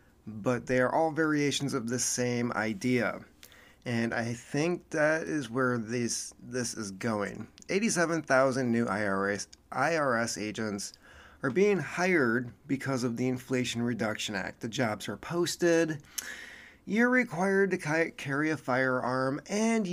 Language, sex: English, male